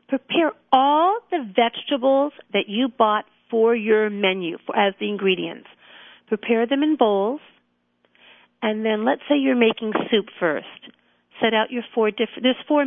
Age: 50-69